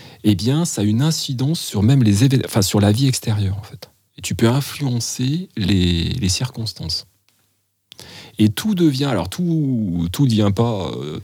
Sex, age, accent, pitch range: male, 40-59, French, 100-130 Hz